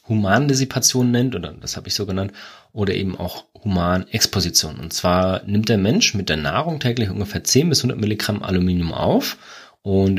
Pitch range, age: 95-130 Hz, 20-39